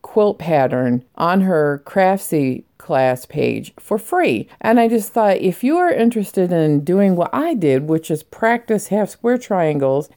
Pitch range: 155-220 Hz